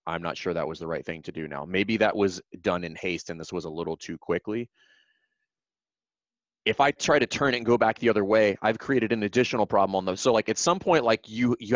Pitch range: 95-120 Hz